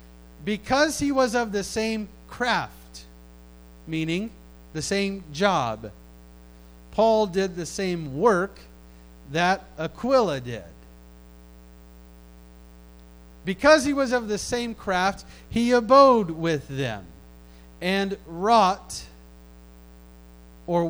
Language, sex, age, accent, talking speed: English, male, 40-59, American, 95 wpm